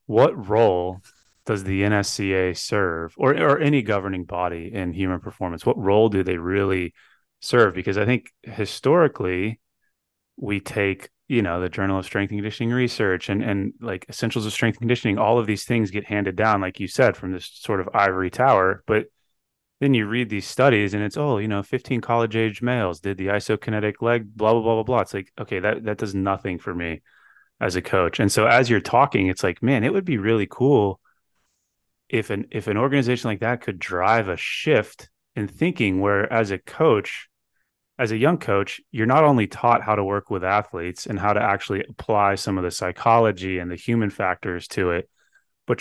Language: English